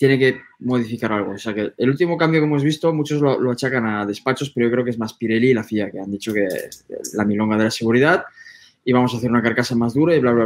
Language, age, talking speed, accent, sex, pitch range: Spanish, 20-39, 280 wpm, Spanish, male, 110-145 Hz